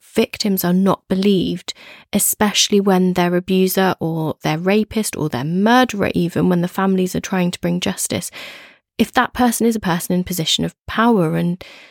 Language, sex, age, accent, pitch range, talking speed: English, female, 30-49, British, 180-220 Hz, 170 wpm